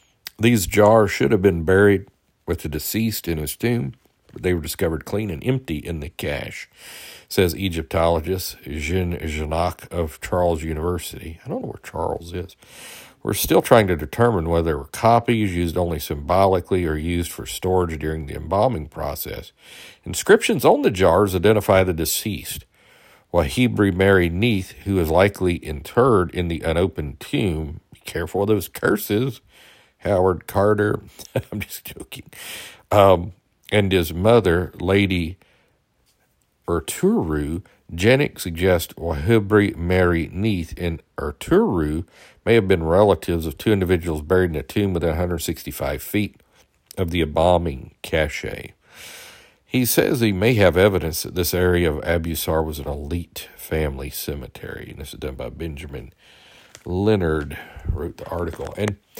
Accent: American